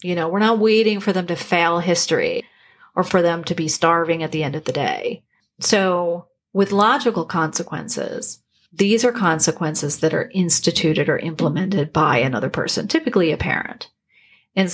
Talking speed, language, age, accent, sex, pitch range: 165 wpm, English, 40-59, American, female, 165-195 Hz